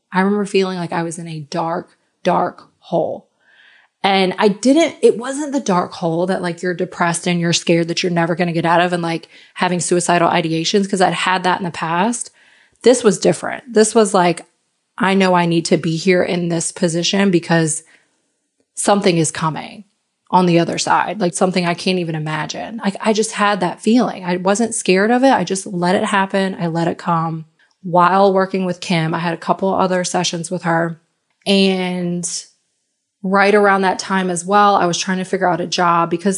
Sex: female